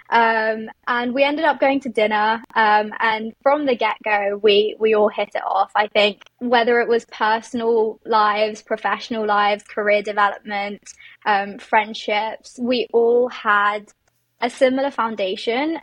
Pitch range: 210-250 Hz